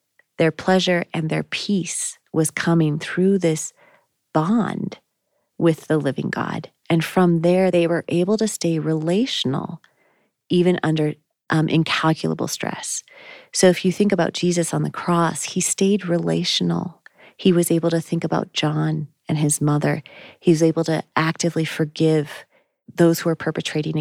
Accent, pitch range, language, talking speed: American, 155-175 Hz, English, 150 wpm